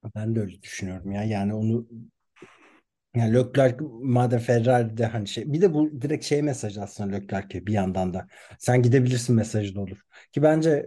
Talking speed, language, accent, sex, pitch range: 170 wpm, Turkish, native, male, 105-135 Hz